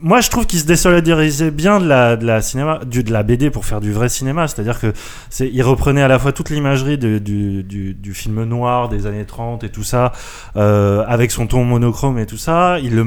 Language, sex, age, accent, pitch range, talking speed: French, male, 20-39, French, 110-140 Hz, 245 wpm